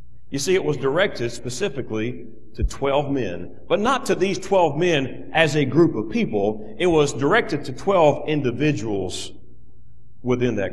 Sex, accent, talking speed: male, American, 155 wpm